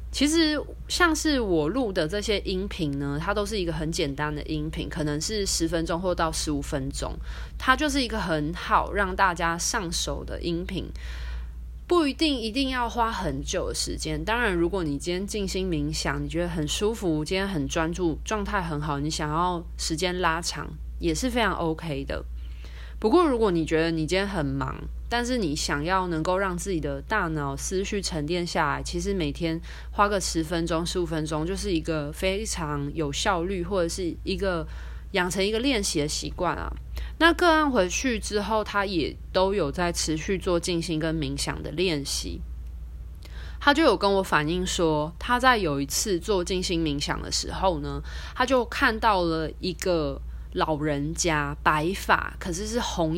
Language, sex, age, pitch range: Chinese, female, 20-39, 150-205 Hz